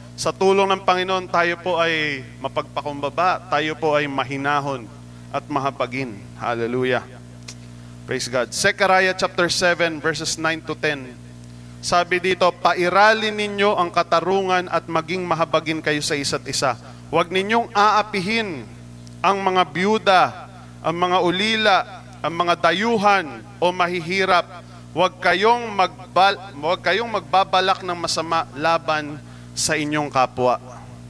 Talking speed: 120 wpm